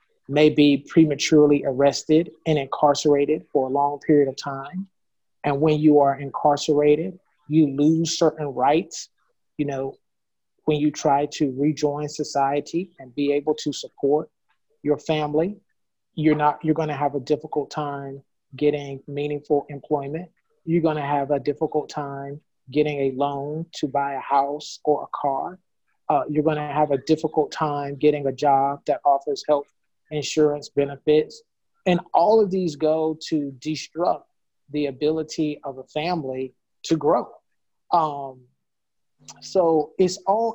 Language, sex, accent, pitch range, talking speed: English, male, American, 140-155 Hz, 145 wpm